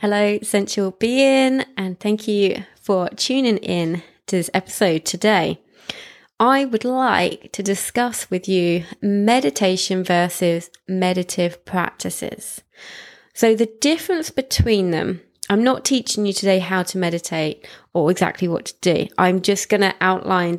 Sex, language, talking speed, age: female, English, 135 wpm, 20-39